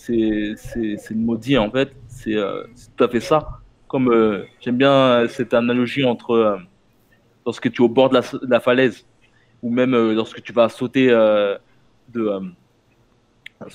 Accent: French